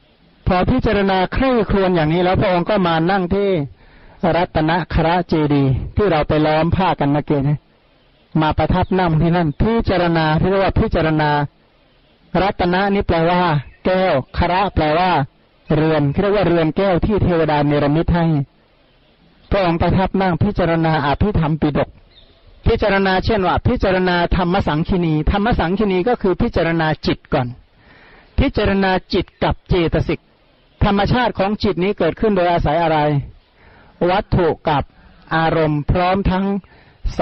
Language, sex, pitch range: Thai, male, 150-190 Hz